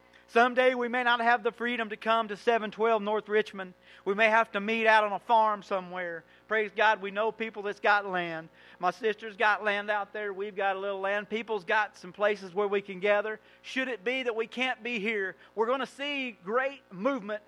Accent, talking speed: American, 220 wpm